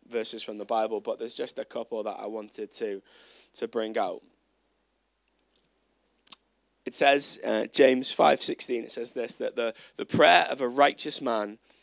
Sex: male